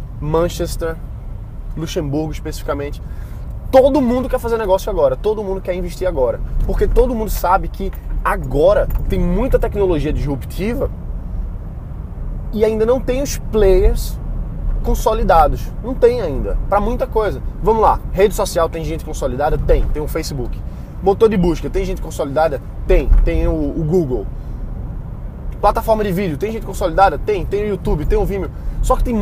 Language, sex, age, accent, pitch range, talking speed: Portuguese, male, 20-39, Brazilian, 155-220 Hz, 155 wpm